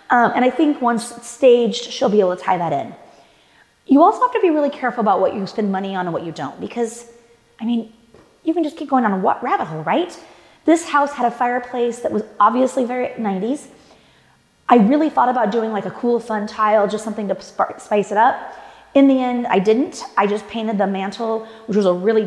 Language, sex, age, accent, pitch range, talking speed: English, female, 30-49, American, 205-260 Hz, 230 wpm